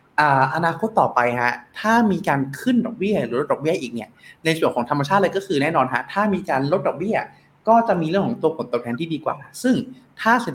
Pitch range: 125-175 Hz